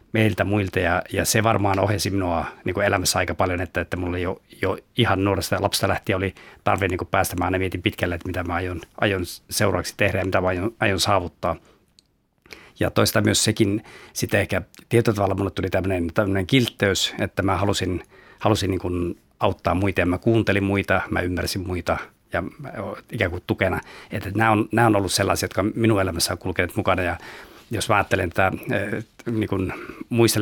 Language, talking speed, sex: Finnish, 185 wpm, male